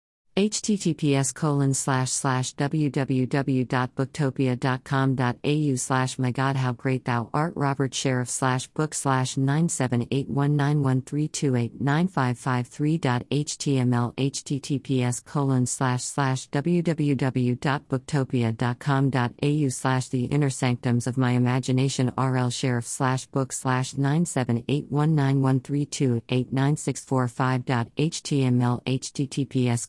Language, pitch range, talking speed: English, 125-140 Hz, 75 wpm